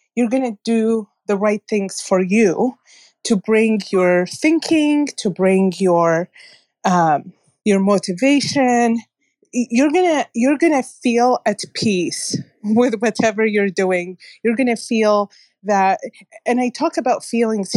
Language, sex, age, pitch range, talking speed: English, female, 30-49, 200-245 Hz, 130 wpm